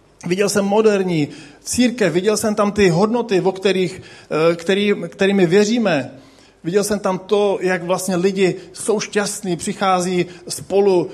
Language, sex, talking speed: Czech, male, 135 wpm